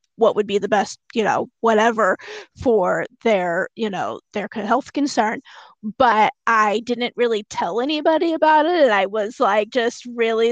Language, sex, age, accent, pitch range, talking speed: English, female, 20-39, American, 215-250 Hz, 165 wpm